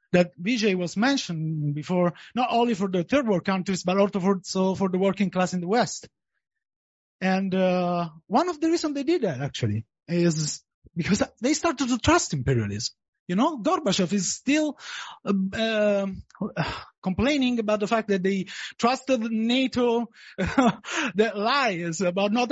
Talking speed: 155 wpm